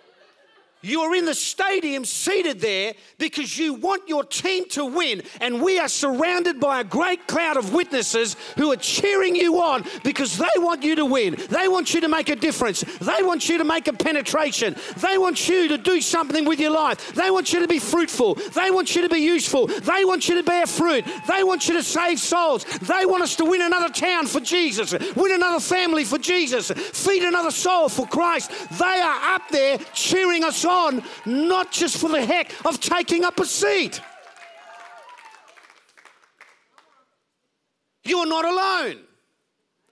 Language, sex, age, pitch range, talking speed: English, male, 40-59, 275-360 Hz, 185 wpm